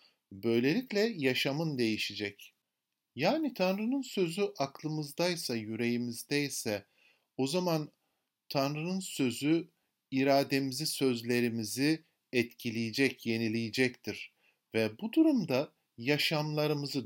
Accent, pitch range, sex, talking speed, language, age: native, 120-190 Hz, male, 70 wpm, Turkish, 50-69